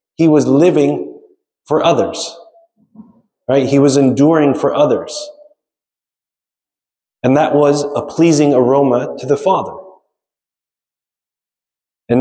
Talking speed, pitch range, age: 105 wpm, 130-155 Hz, 30-49